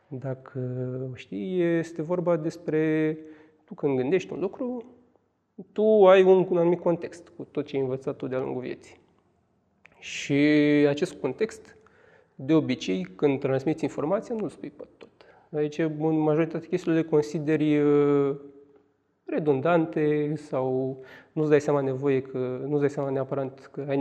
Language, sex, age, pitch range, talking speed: Romanian, male, 30-49, 140-175 Hz, 140 wpm